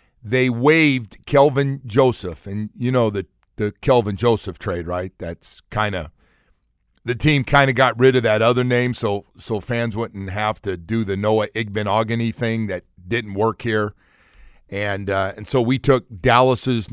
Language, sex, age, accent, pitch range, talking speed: English, male, 50-69, American, 95-115 Hz, 170 wpm